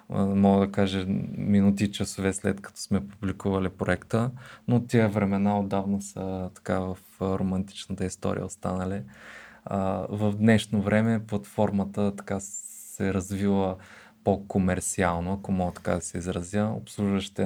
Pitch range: 95-105 Hz